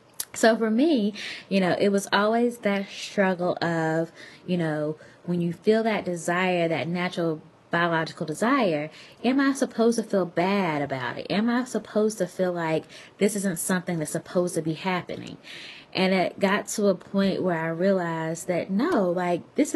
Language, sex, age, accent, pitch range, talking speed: English, female, 10-29, American, 165-215 Hz, 175 wpm